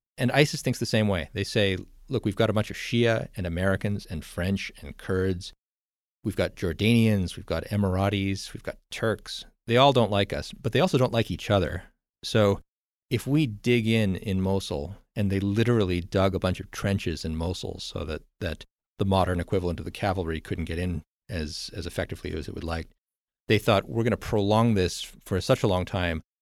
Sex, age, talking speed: male, 40-59, 205 wpm